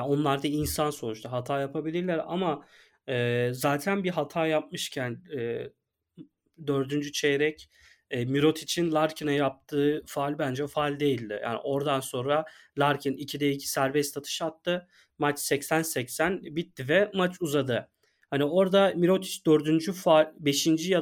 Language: Turkish